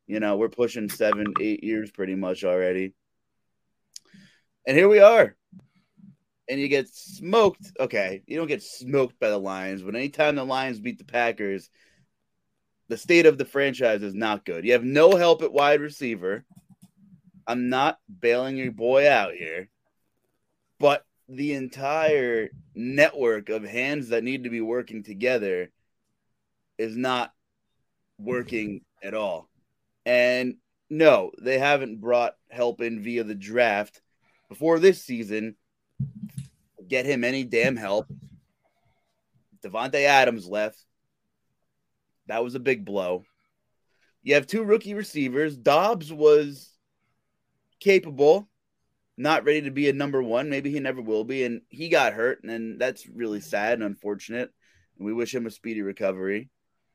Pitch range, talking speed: 110-155 Hz, 140 wpm